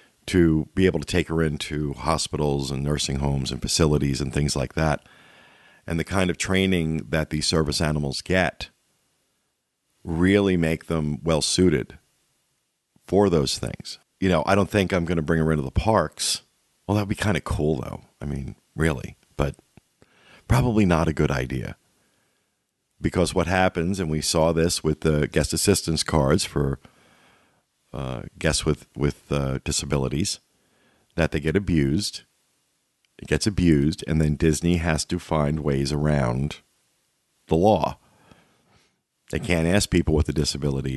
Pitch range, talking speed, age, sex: 75-90 Hz, 155 wpm, 50-69, male